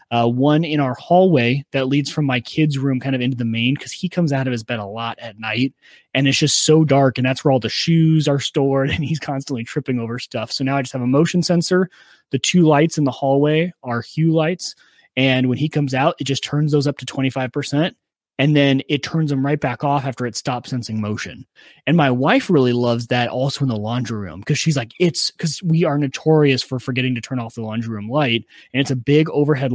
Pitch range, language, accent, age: 120-150 Hz, English, American, 20-39